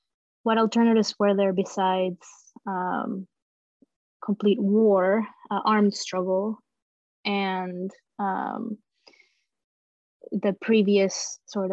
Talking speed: 80 wpm